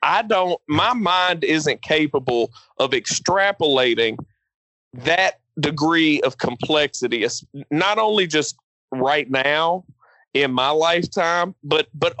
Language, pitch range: English, 140-190 Hz